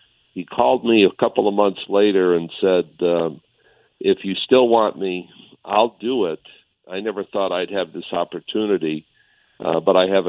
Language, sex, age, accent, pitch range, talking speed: English, male, 60-79, American, 90-105 Hz, 175 wpm